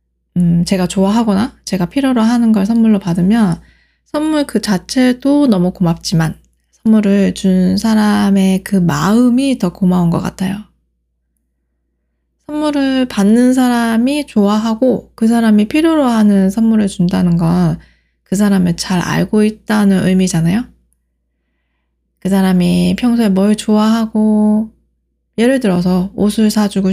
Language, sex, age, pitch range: Korean, female, 20-39, 175-220 Hz